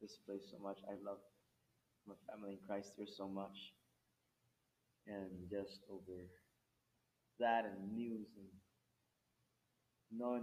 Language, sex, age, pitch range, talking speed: English, male, 20-39, 100-120 Hz, 120 wpm